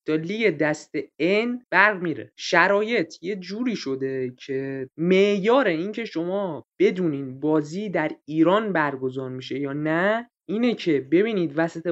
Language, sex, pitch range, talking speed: Persian, male, 160-205 Hz, 130 wpm